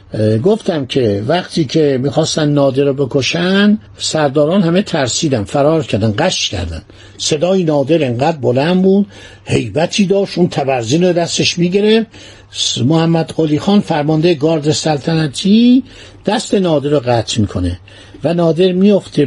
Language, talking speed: Persian, 130 wpm